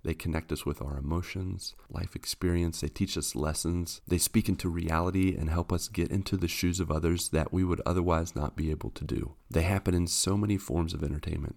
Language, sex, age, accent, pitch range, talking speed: English, male, 40-59, American, 75-90 Hz, 220 wpm